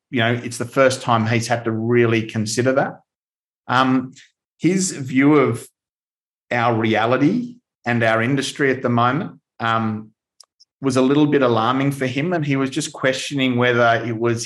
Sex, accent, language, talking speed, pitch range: male, Australian, English, 165 wpm, 115-135 Hz